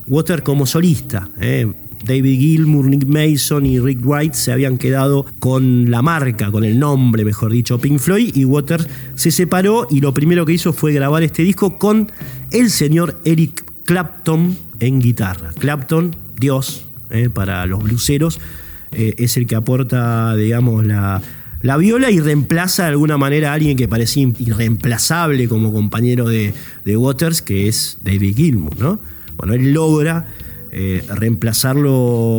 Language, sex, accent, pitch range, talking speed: Spanish, male, Argentinian, 120-160 Hz, 155 wpm